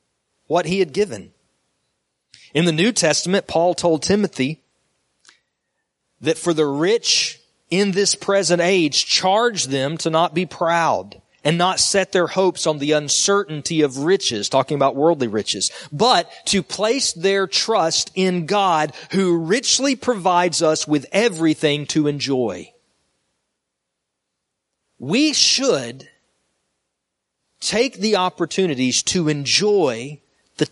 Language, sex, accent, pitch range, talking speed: English, male, American, 150-200 Hz, 120 wpm